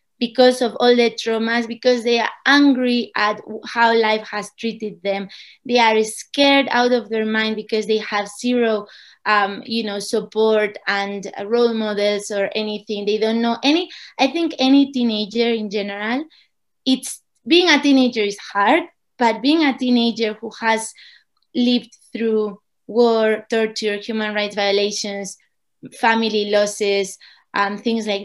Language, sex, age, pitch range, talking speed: English, female, 20-39, 210-250 Hz, 140 wpm